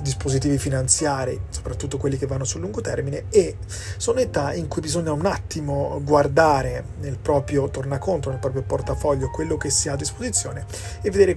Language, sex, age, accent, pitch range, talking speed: Italian, male, 30-49, native, 100-150 Hz, 170 wpm